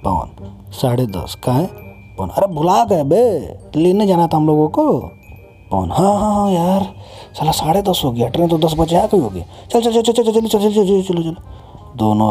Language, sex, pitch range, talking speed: Hindi, male, 90-135 Hz, 210 wpm